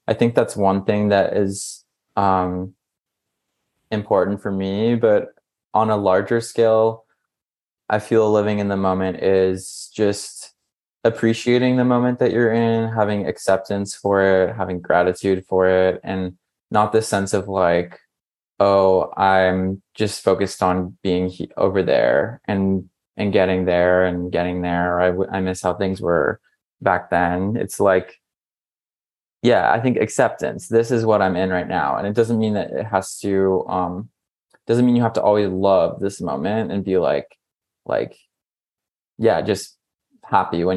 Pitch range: 95-110 Hz